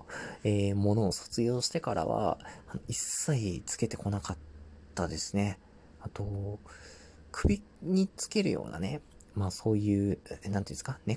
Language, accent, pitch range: Japanese, native, 85-120 Hz